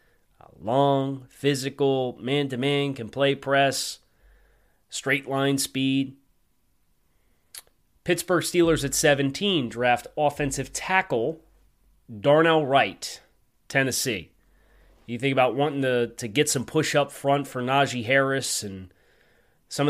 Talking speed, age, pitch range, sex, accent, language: 105 wpm, 30-49, 120-145 Hz, male, American, English